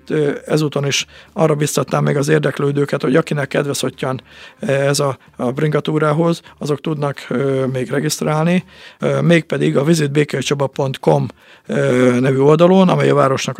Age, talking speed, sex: 50-69, 110 wpm, male